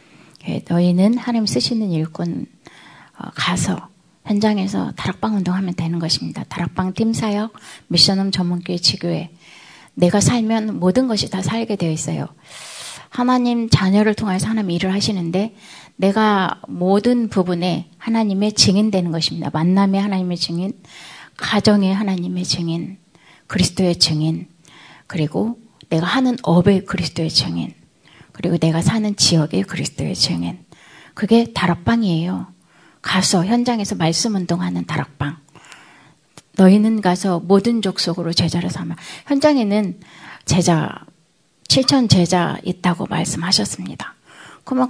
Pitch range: 170-210 Hz